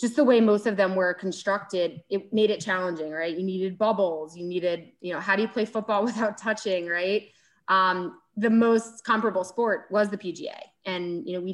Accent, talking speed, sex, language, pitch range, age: American, 210 wpm, female, English, 180-215 Hz, 20-39